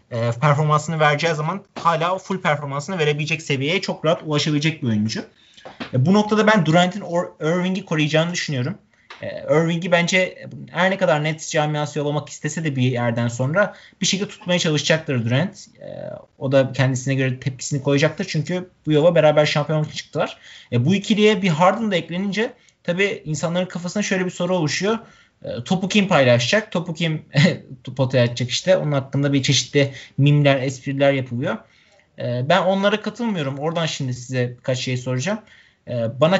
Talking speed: 145 wpm